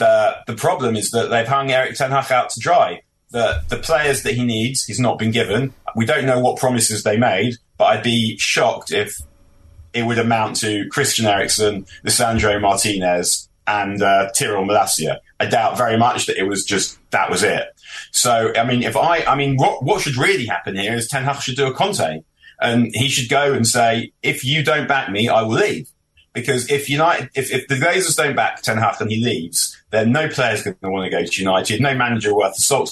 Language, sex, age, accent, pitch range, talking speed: English, male, 30-49, British, 105-135 Hz, 220 wpm